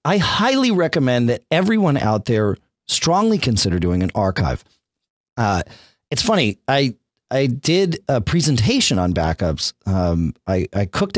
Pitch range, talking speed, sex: 95-155 Hz, 140 wpm, male